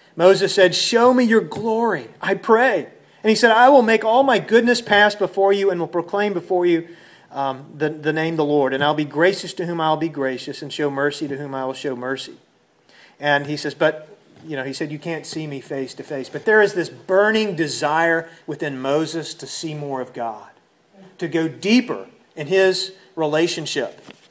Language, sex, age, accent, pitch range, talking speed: English, male, 40-59, American, 140-185 Hz, 205 wpm